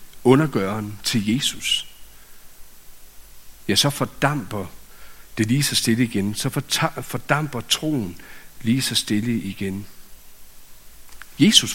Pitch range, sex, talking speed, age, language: 110-150 Hz, male, 95 wpm, 60-79, Danish